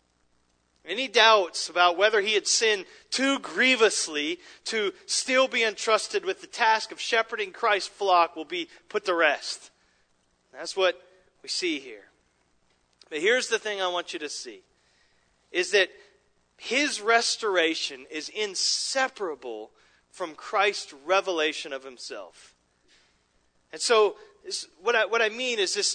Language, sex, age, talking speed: English, male, 40-59, 130 wpm